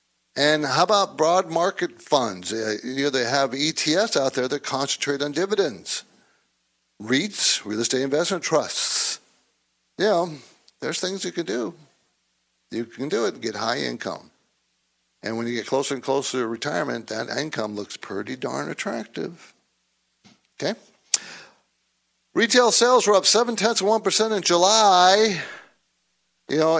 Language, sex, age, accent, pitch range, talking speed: English, male, 50-69, American, 115-165 Hz, 145 wpm